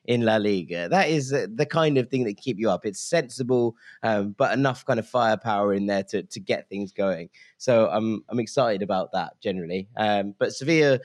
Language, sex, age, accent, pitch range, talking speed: English, male, 20-39, British, 100-125 Hz, 205 wpm